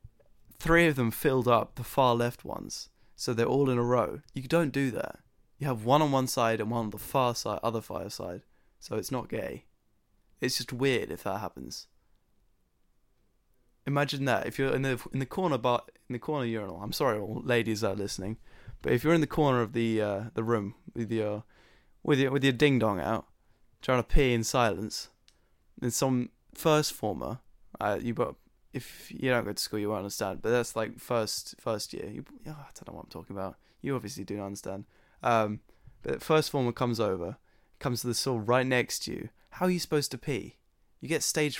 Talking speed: 215 wpm